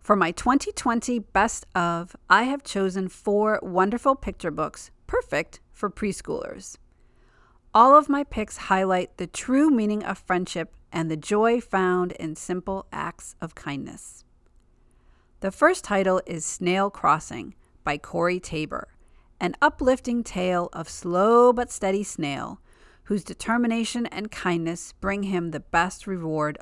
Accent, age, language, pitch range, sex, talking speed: American, 40-59, English, 170-225 Hz, female, 135 wpm